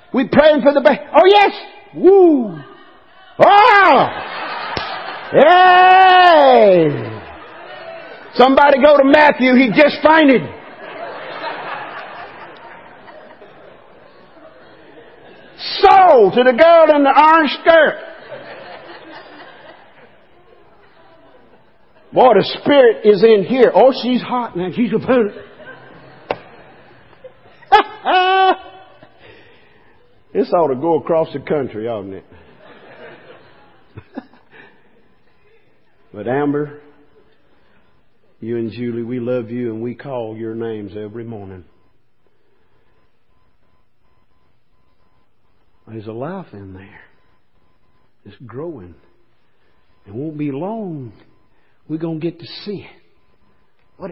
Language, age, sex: English, 50-69, male